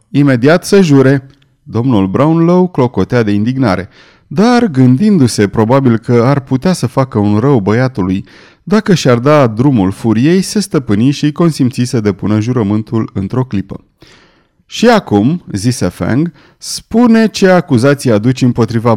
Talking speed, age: 135 wpm, 30-49